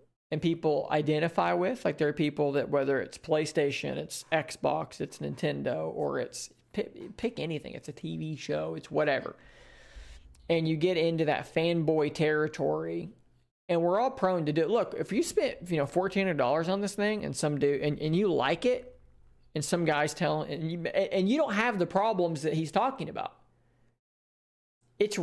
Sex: male